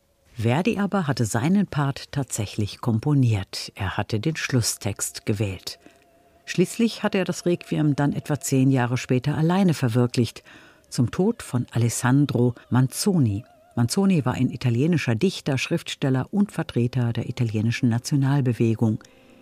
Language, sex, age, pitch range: German, female, 60-79, 110-145 Hz